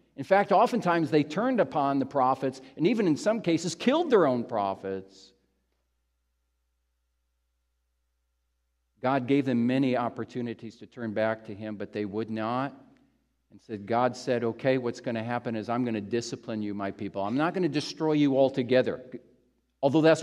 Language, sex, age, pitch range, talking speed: English, male, 50-69, 115-160 Hz, 170 wpm